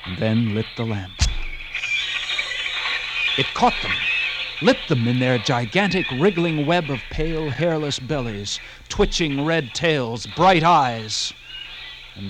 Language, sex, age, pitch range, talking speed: English, male, 50-69, 115-165 Hz, 120 wpm